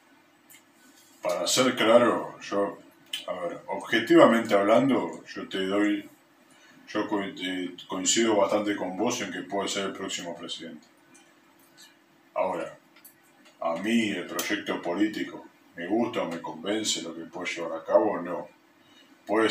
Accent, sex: Argentinian, male